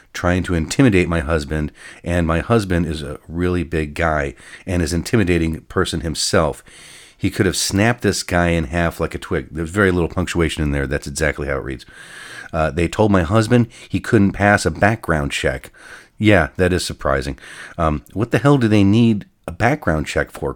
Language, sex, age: English, male, 40-59